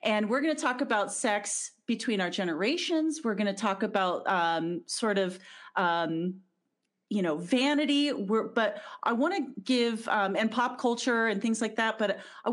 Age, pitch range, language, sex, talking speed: 40-59, 180-235 Hz, English, female, 170 wpm